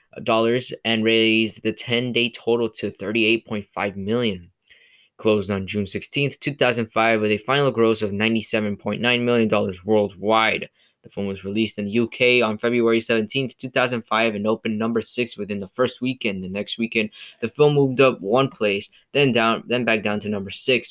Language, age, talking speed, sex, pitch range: English, 10-29, 170 wpm, male, 105-120 Hz